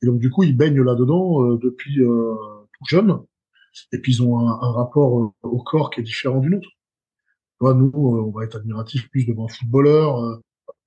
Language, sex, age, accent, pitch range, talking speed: French, male, 20-39, French, 120-150 Hz, 205 wpm